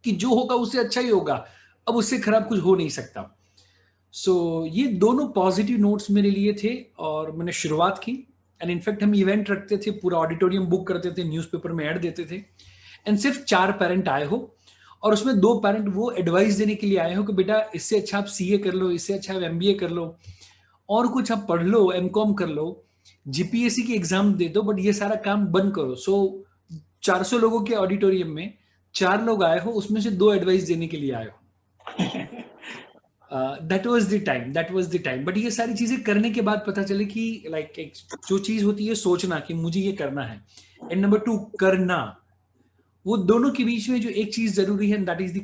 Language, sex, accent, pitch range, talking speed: Hindi, male, native, 160-210 Hz, 180 wpm